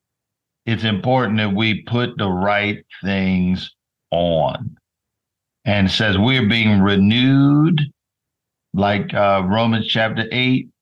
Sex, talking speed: male, 110 wpm